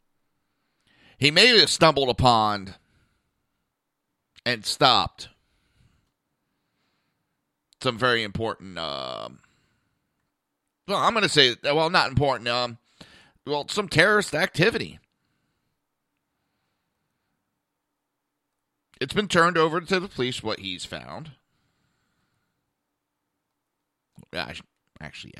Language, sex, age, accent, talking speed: English, male, 40-59, American, 85 wpm